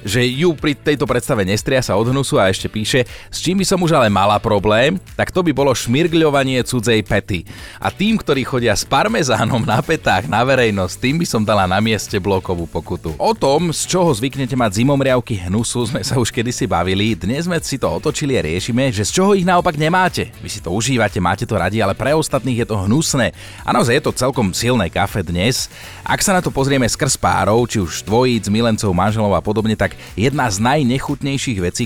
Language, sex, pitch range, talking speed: Slovak, male, 100-130 Hz, 205 wpm